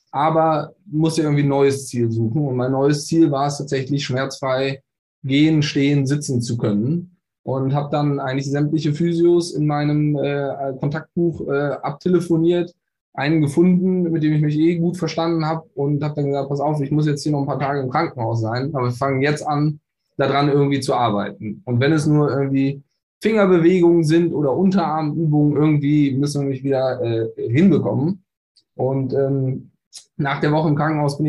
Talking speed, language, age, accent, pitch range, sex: 175 wpm, German, 10-29, German, 140-160 Hz, male